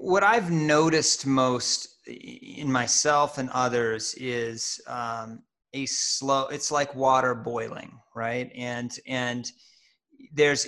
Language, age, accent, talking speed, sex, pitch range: English, 30-49, American, 110 wpm, male, 120-140 Hz